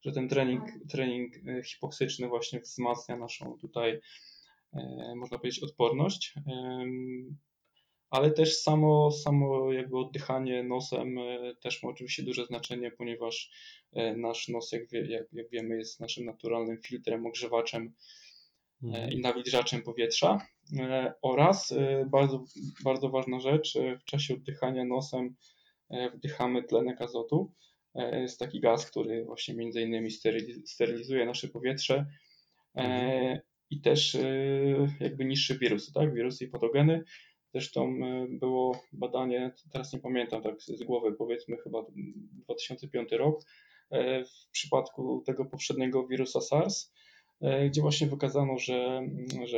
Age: 10-29